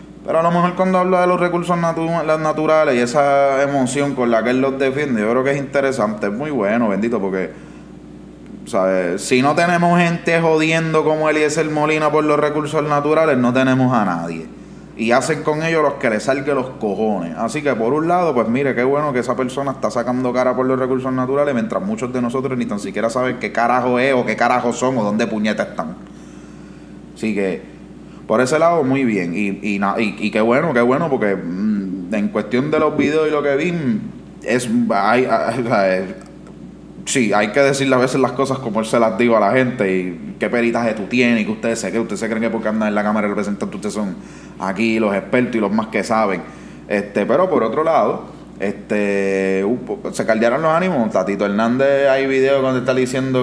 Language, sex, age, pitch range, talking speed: Spanish, male, 20-39, 110-140 Hz, 215 wpm